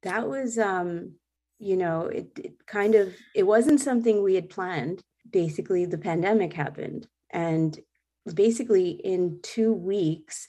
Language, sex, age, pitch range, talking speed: English, female, 30-49, 150-175 Hz, 135 wpm